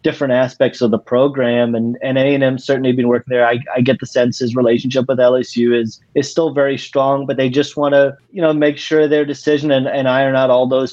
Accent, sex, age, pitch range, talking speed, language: American, male, 30-49, 120-135 Hz, 235 wpm, English